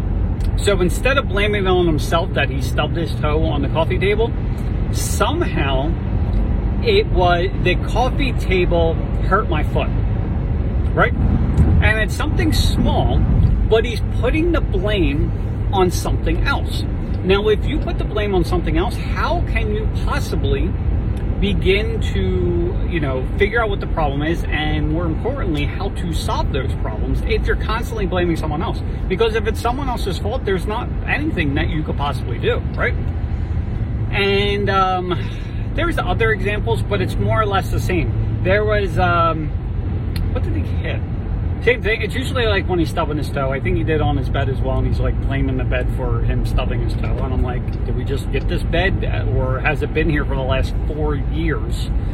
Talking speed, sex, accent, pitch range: 180 wpm, male, American, 95-115 Hz